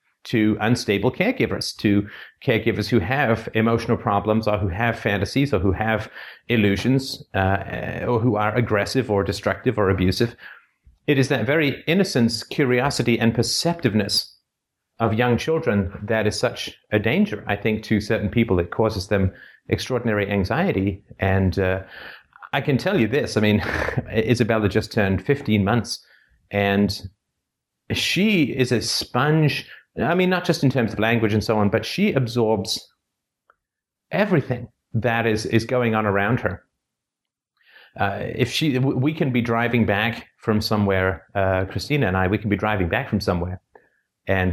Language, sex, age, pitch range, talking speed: English, male, 30-49, 100-125 Hz, 155 wpm